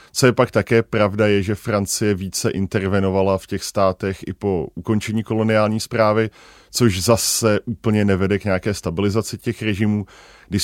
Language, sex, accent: Czech, male, native